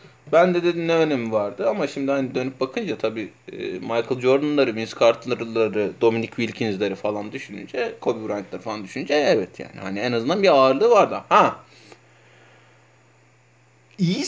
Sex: male